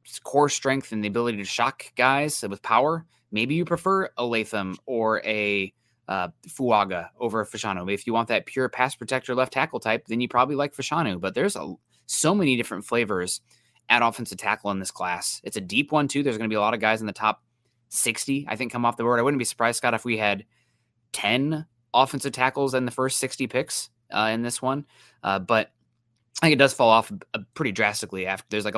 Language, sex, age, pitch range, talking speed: English, male, 20-39, 105-130 Hz, 220 wpm